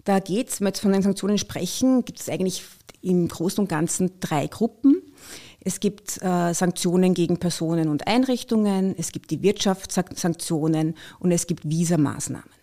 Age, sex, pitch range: 30-49, female, 165-205 Hz